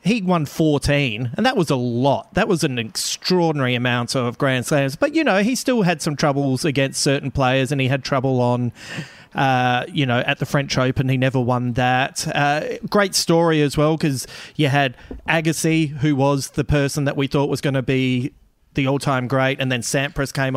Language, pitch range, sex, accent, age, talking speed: English, 130-160 Hz, male, Australian, 30-49, 205 wpm